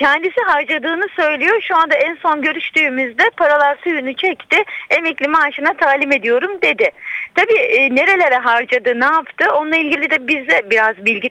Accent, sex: native, female